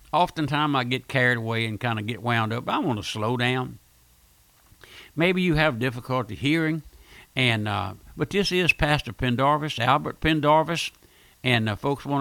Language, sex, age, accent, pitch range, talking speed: English, male, 60-79, American, 115-160 Hz, 165 wpm